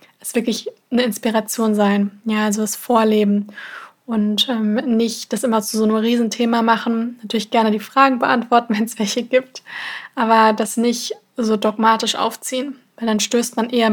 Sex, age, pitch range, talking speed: female, 20-39, 220-245 Hz, 170 wpm